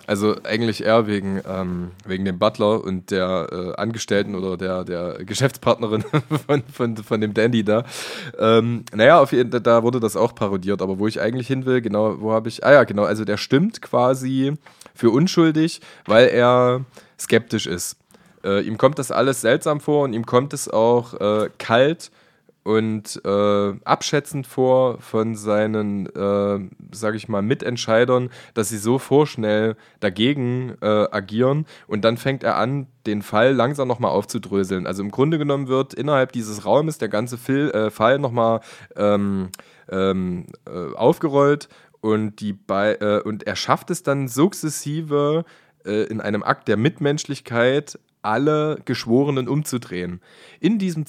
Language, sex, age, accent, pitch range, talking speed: German, male, 20-39, German, 105-135 Hz, 155 wpm